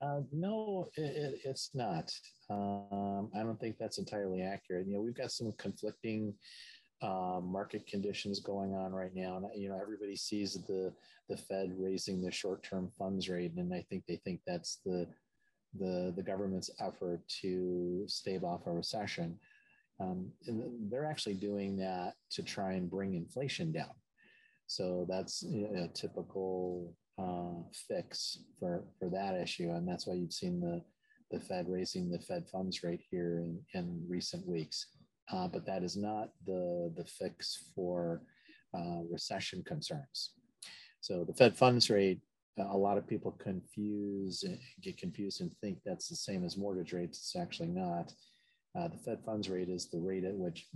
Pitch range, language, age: 90-135 Hz, English, 30-49